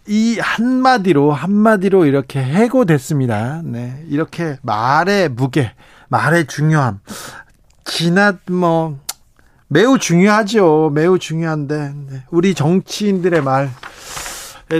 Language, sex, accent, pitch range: Korean, male, native, 130-175 Hz